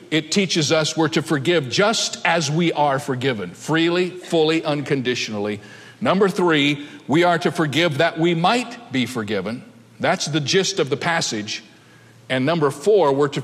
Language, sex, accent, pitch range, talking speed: English, male, American, 150-190 Hz, 160 wpm